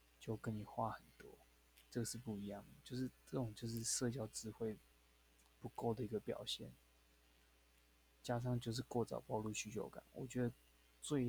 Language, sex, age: Chinese, male, 20-39